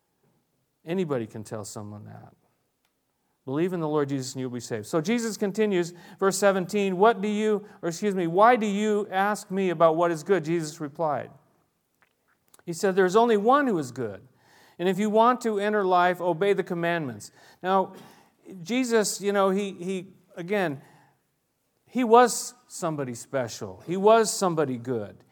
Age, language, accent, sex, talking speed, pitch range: 40-59, English, American, male, 165 wpm, 170-220 Hz